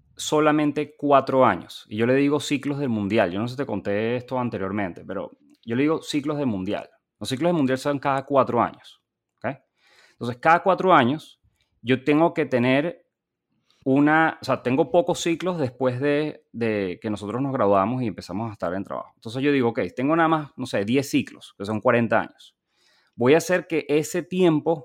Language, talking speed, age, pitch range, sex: Spanish, 200 wpm, 30-49, 120-150 Hz, male